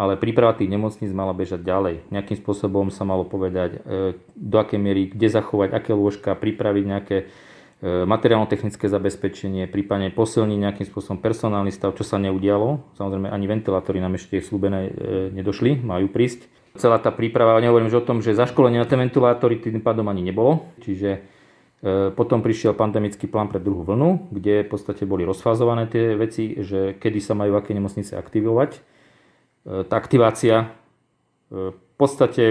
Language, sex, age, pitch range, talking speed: Slovak, male, 40-59, 100-115 Hz, 155 wpm